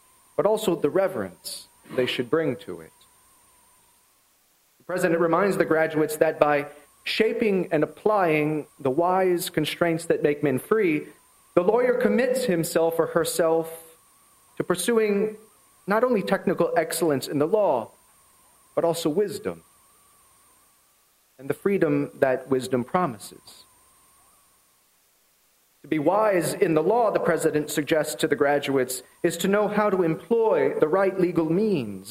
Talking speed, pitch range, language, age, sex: 135 wpm, 145-245 Hz, English, 40-59, male